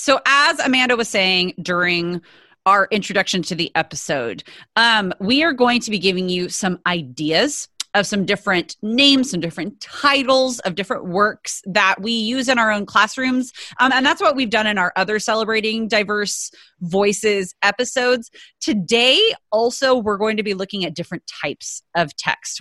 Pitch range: 175-240 Hz